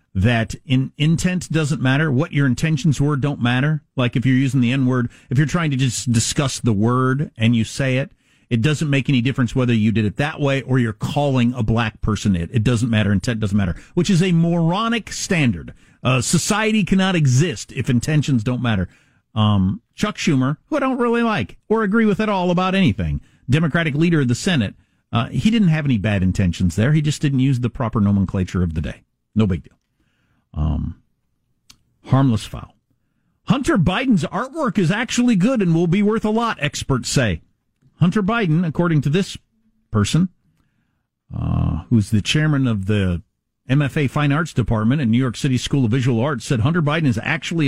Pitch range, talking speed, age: 115-165 Hz, 195 wpm, 50-69